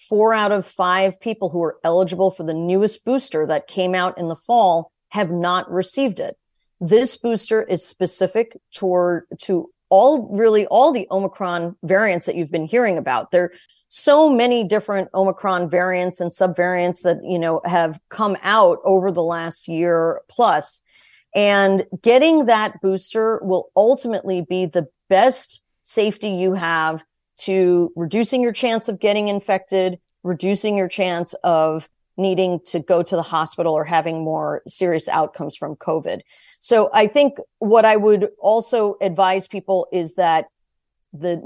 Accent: American